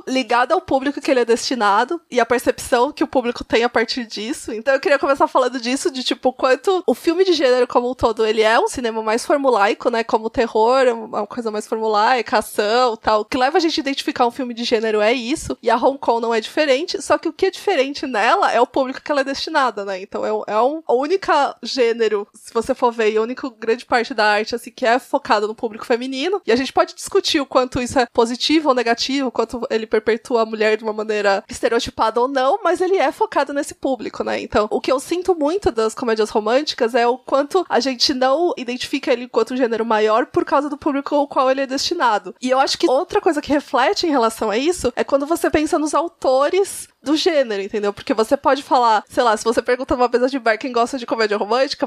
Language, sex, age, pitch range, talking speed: Portuguese, female, 20-39, 235-300 Hz, 245 wpm